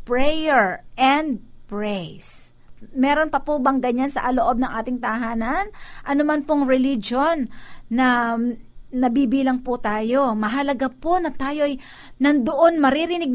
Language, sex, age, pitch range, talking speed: Filipino, female, 50-69, 235-310 Hz, 115 wpm